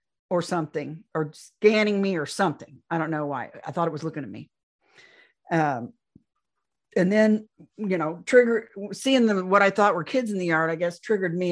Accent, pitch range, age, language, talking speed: American, 165-210 Hz, 50-69, English, 200 wpm